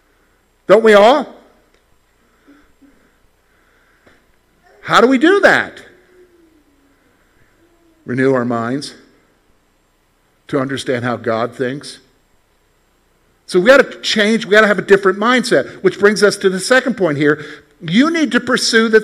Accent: American